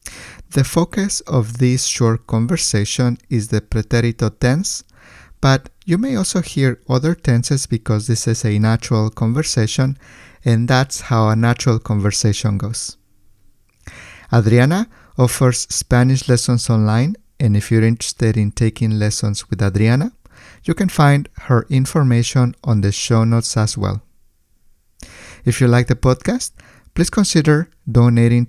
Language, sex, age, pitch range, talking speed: English, male, 50-69, 110-135 Hz, 135 wpm